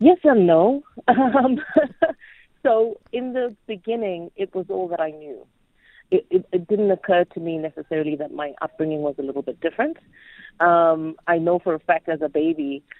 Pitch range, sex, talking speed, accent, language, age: 150-195 Hz, female, 175 wpm, Indian, English, 30-49